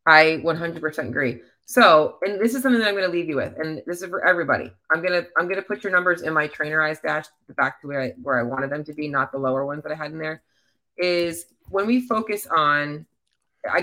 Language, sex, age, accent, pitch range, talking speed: English, female, 30-49, American, 150-195 Hz, 245 wpm